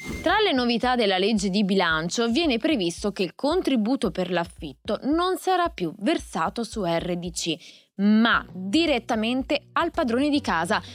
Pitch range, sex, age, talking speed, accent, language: 190-295 Hz, female, 20-39, 140 wpm, native, Italian